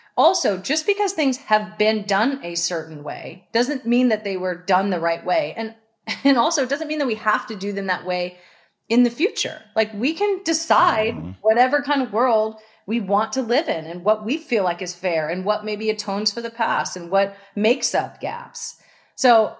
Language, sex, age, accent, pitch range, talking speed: English, female, 30-49, American, 185-230 Hz, 210 wpm